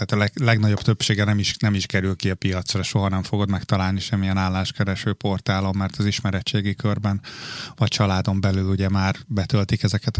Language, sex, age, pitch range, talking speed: Hungarian, male, 20-39, 100-110 Hz, 175 wpm